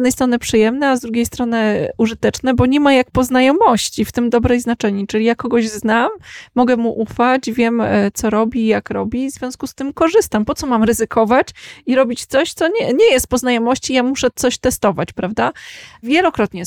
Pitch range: 200-255 Hz